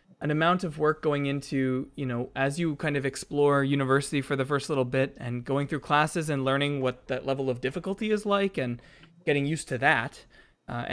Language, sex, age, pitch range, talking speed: English, male, 20-39, 125-150 Hz, 210 wpm